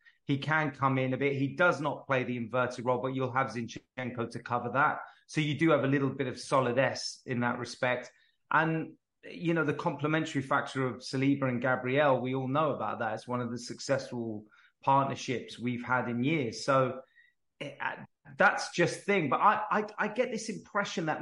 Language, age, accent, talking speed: English, 20-39, British, 205 wpm